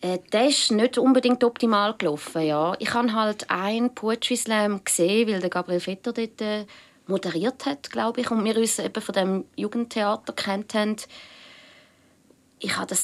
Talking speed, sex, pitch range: 150 wpm, female, 180-230 Hz